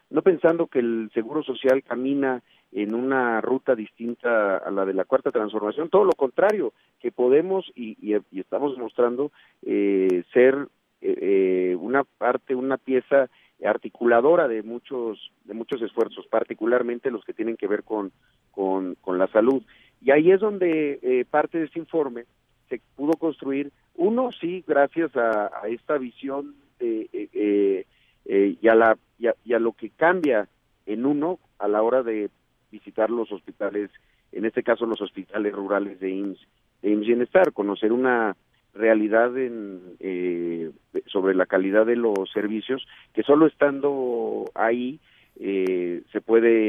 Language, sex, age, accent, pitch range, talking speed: Spanish, male, 50-69, Mexican, 105-140 Hz, 155 wpm